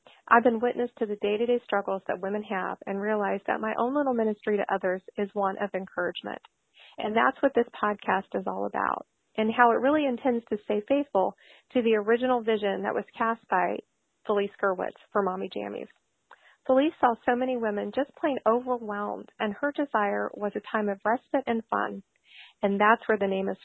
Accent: American